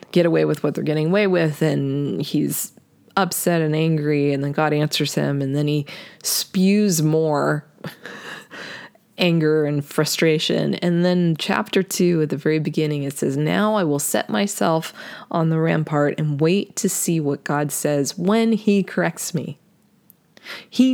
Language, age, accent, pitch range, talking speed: English, 20-39, American, 155-200 Hz, 160 wpm